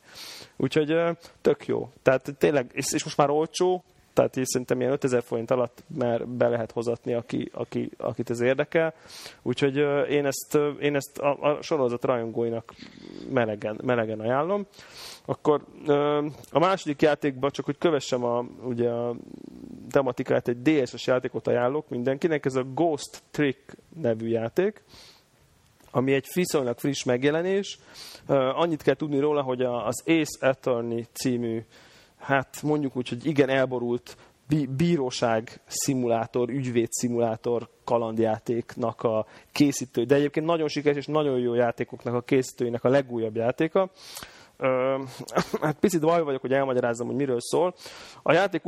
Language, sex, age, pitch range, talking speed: Hungarian, male, 30-49, 120-150 Hz, 135 wpm